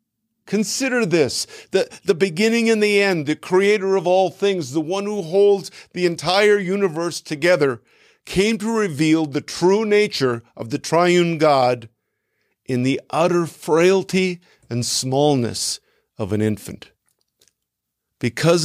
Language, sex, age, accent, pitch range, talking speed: English, male, 50-69, American, 125-175 Hz, 130 wpm